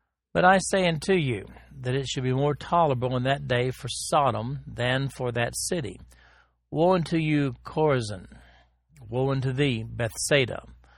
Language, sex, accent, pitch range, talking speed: English, male, American, 115-145 Hz, 155 wpm